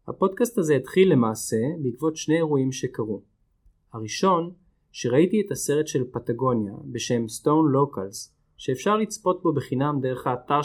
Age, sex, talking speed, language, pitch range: 20-39, male, 130 wpm, Hebrew, 115-160 Hz